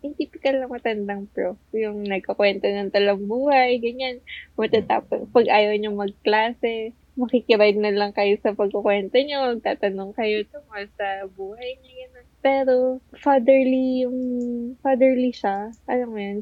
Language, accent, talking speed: Filipino, native, 130 wpm